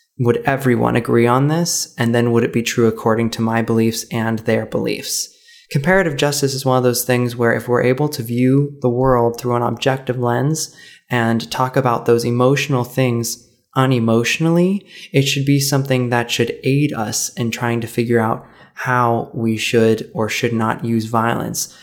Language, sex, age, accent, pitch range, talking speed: English, male, 20-39, American, 115-135 Hz, 180 wpm